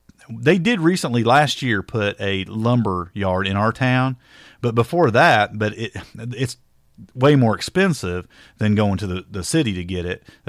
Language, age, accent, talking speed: English, 40-59, American, 170 wpm